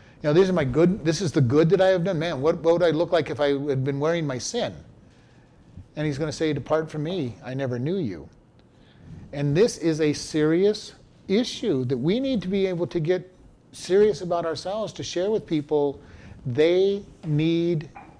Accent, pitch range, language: American, 145-190 Hz, English